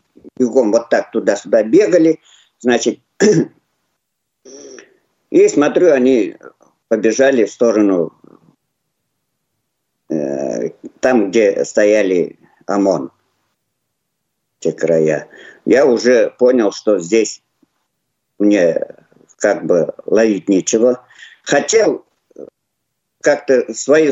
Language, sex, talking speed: Russian, male, 80 wpm